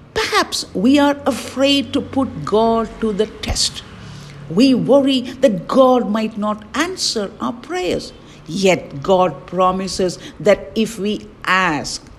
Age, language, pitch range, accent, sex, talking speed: 50-69, English, 195-245 Hz, Indian, female, 130 wpm